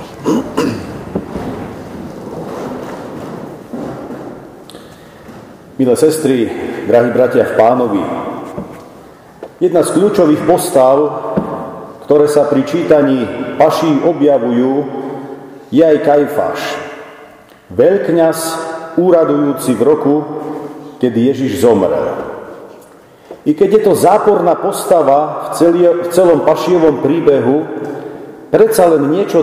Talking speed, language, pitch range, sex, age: 80 wpm, Slovak, 140-180 Hz, male, 40-59